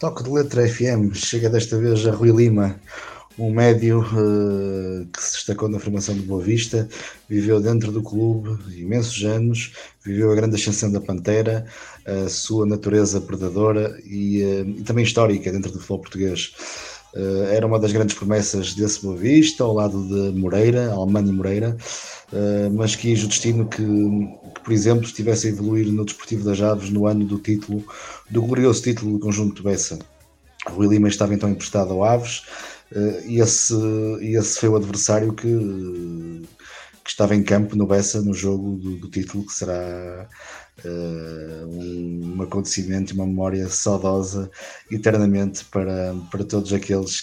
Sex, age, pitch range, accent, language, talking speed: male, 20-39, 95-110 Hz, Portuguese, Portuguese, 155 wpm